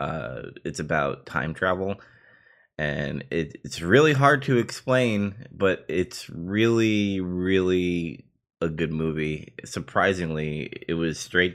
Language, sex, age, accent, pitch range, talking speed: English, male, 20-39, American, 80-115 Hz, 115 wpm